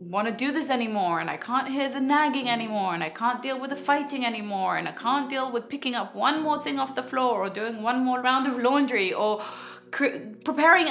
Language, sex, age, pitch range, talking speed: English, female, 20-39, 195-265 Hz, 225 wpm